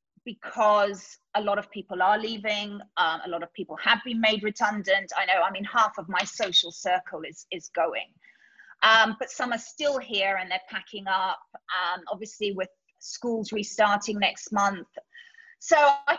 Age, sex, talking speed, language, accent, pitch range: 30-49, female, 175 wpm, English, British, 200-260 Hz